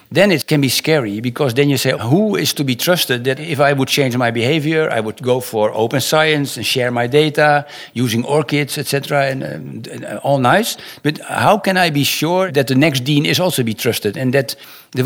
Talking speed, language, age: 225 wpm, English, 60-79